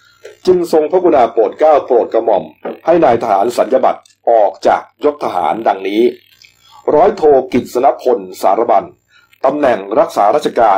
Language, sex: Thai, male